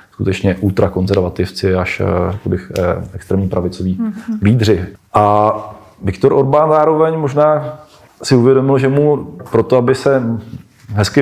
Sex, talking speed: male, 100 wpm